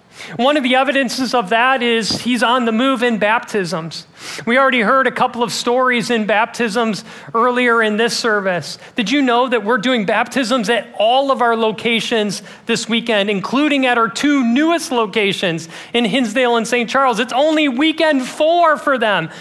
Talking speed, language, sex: 175 wpm, English, male